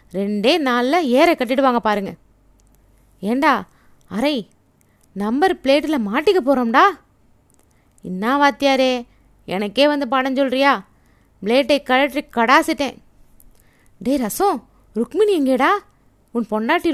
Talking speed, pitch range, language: 90 wpm, 240-320 Hz, Tamil